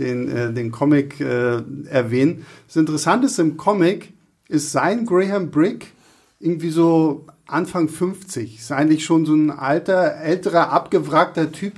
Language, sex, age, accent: German, male, 50-69, German